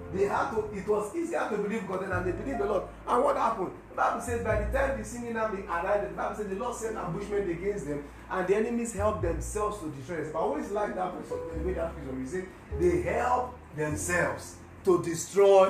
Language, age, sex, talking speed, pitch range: English, 40-59, male, 220 wpm, 150-215 Hz